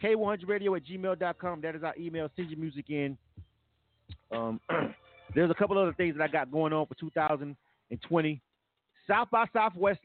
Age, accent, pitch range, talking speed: 30-49, American, 120-175 Hz, 160 wpm